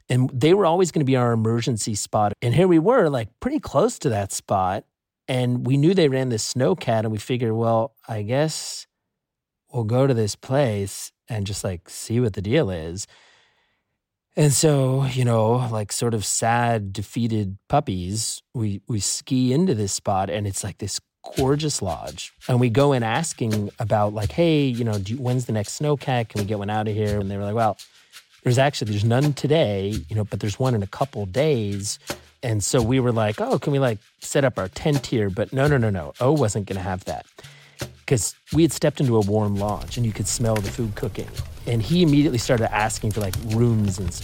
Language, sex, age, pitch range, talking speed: English, male, 30-49, 105-140 Hz, 215 wpm